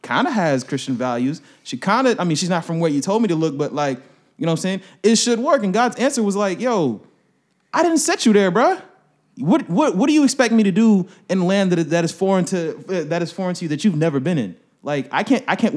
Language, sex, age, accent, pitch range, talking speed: English, male, 20-39, American, 140-195 Hz, 275 wpm